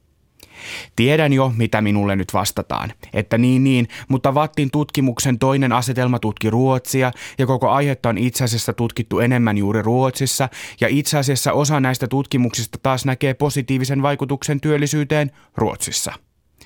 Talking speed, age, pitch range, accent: 135 wpm, 30-49, 105-135 Hz, native